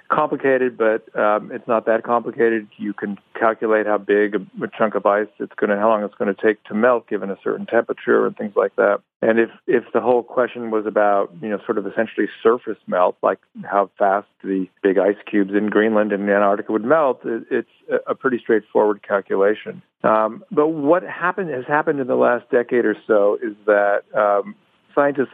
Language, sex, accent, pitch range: English, male, American, 100-120 Hz